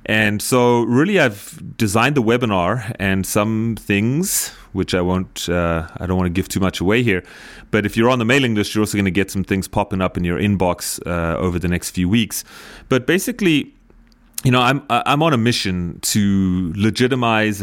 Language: English